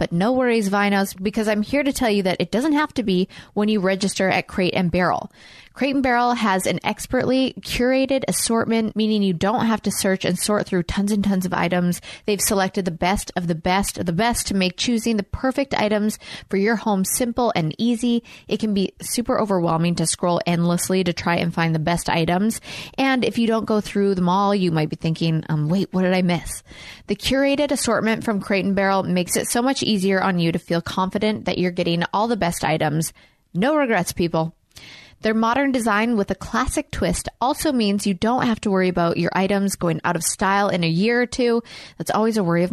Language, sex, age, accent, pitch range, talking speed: English, female, 20-39, American, 175-225 Hz, 220 wpm